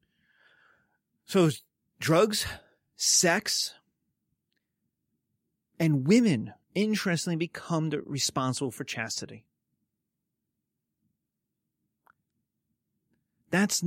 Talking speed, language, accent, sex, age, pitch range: 50 wpm, English, American, male, 30-49, 140-195 Hz